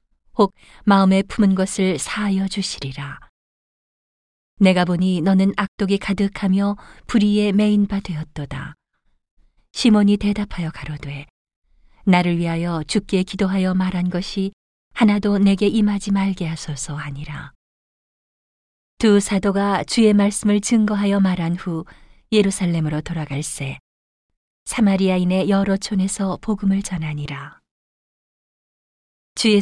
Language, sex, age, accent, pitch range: Korean, female, 40-59, native, 160-205 Hz